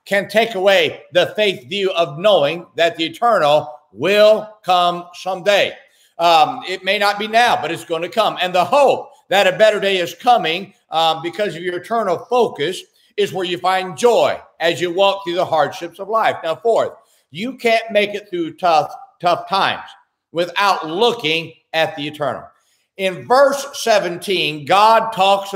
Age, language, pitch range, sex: 60-79, English, 170-215 Hz, male